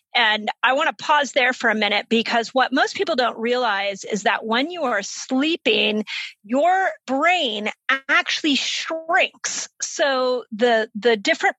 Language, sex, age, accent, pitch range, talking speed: English, female, 40-59, American, 215-270 Hz, 150 wpm